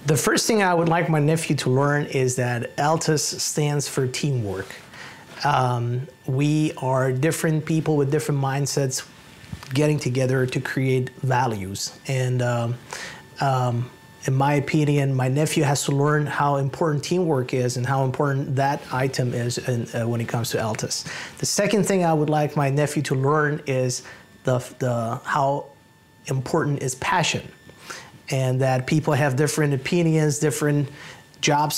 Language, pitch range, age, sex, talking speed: English, 125-150 Hz, 30-49, male, 150 wpm